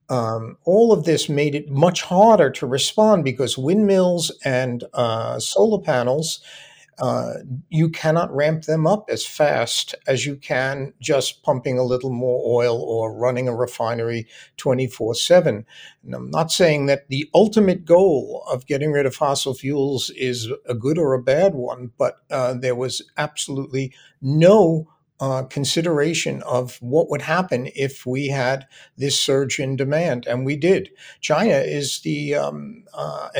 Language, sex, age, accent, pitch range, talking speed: English, male, 50-69, American, 125-155 Hz, 155 wpm